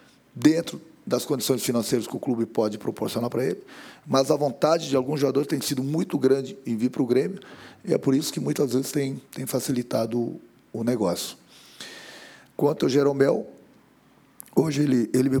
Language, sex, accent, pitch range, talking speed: Portuguese, male, Brazilian, 105-145 Hz, 175 wpm